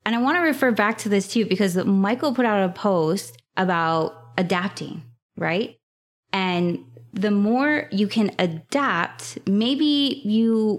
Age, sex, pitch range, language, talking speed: 20-39, female, 185-235 Hz, English, 145 wpm